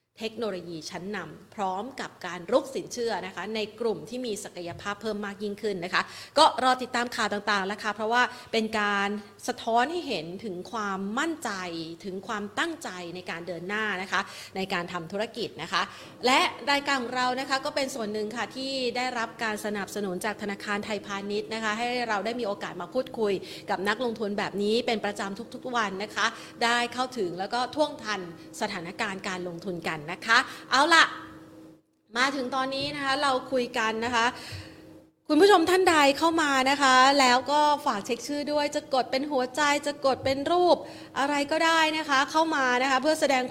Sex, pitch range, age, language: female, 205-265 Hz, 30-49, Thai